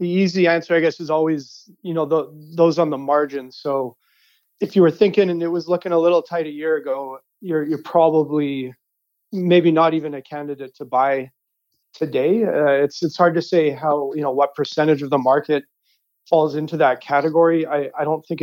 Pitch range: 140-165 Hz